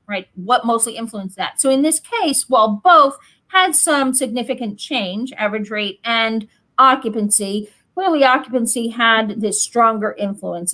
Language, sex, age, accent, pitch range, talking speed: English, female, 40-59, American, 220-275 Hz, 145 wpm